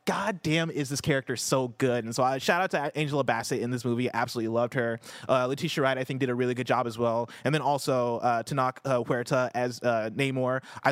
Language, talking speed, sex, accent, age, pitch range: English, 235 wpm, male, American, 20-39, 125-155 Hz